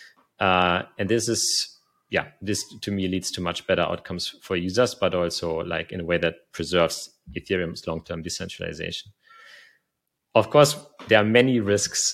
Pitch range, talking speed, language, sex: 85-105 Hz, 160 wpm, English, male